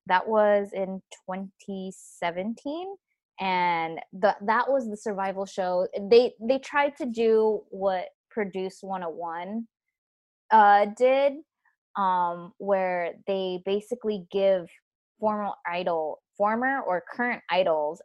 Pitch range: 175-225 Hz